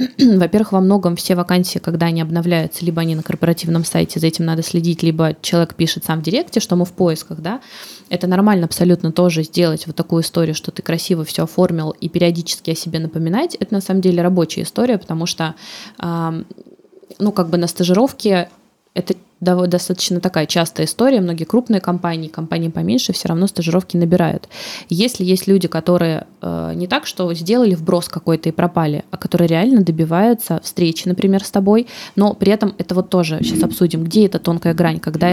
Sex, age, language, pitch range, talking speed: female, 20-39, Russian, 170-200 Hz, 185 wpm